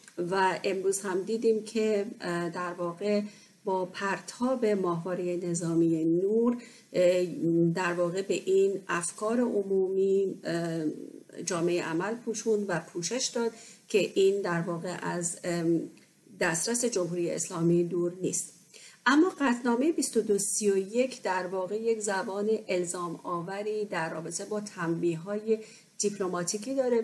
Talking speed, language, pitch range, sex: 110 wpm, Persian, 180-220 Hz, female